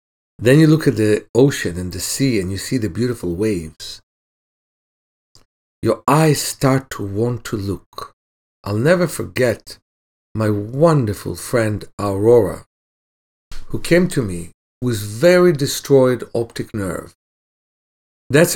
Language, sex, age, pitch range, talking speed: English, male, 50-69, 90-130 Hz, 125 wpm